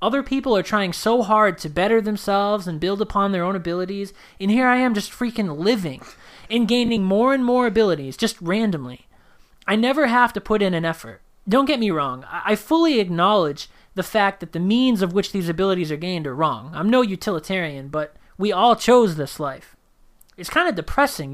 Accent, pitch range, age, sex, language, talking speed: American, 170-235 Hz, 20-39, male, English, 200 wpm